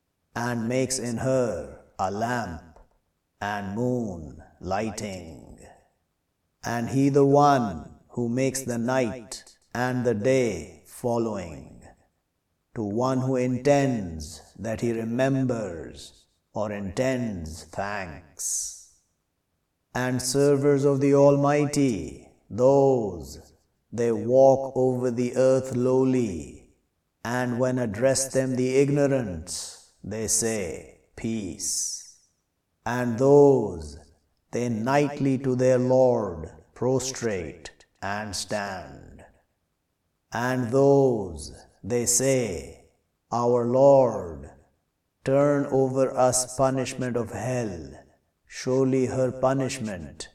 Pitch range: 90-130 Hz